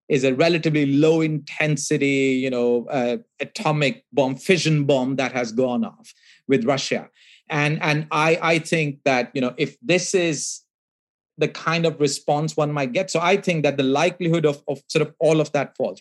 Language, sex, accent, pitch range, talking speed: English, male, Indian, 140-175 Hz, 185 wpm